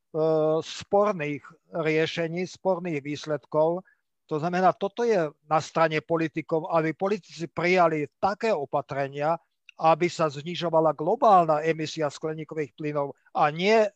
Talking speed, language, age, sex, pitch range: 110 wpm, Slovak, 50-69, male, 155-185 Hz